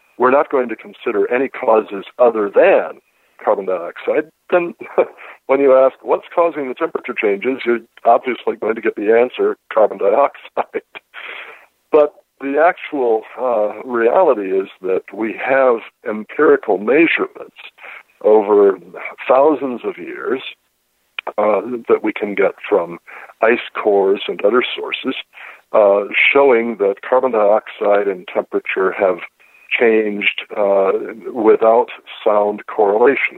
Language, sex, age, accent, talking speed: English, male, 60-79, American, 120 wpm